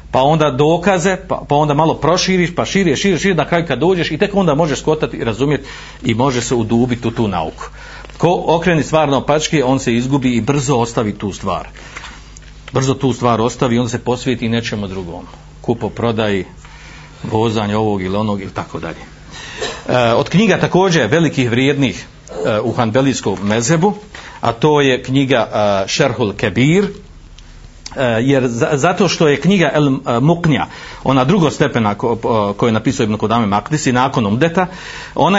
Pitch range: 115-165 Hz